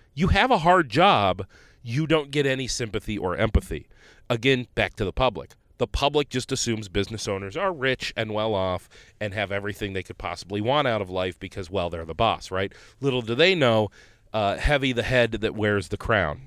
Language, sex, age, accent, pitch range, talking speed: English, male, 30-49, American, 95-125 Hz, 200 wpm